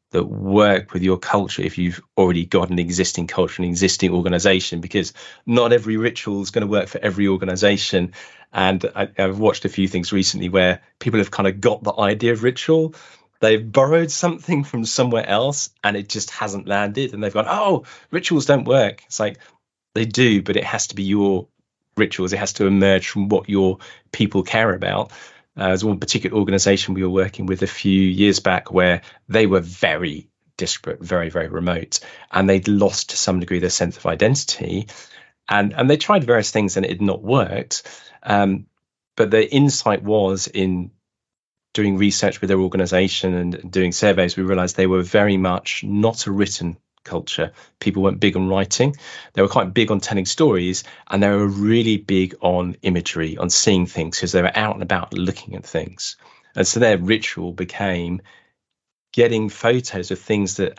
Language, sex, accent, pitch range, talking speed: English, male, British, 95-110 Hz, 190 wpm